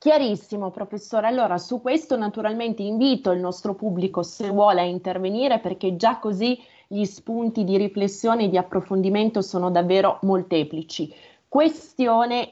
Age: 30-49